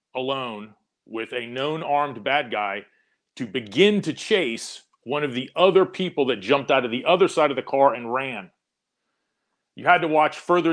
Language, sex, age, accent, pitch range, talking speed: English, male, 40-59, American, 120-150 Hz, 185 wpm